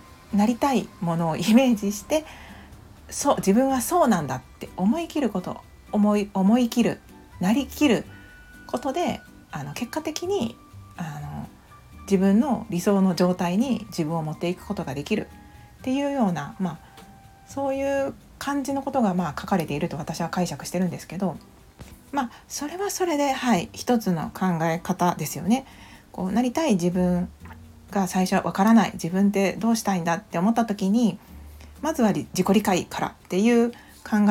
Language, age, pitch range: Japanese, 40-59, 175-240 Hz